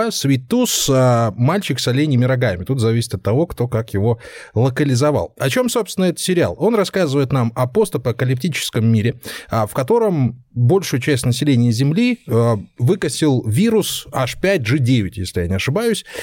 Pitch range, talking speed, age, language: 115-165 Hz, 135 wpm, 20-39, Russian